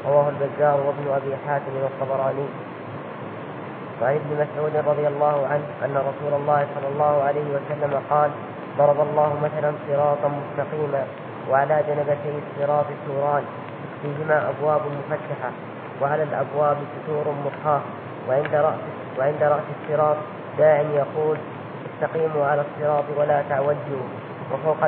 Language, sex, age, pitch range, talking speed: Arabic, female, 10-29, 145-155 Hz, 120 wpm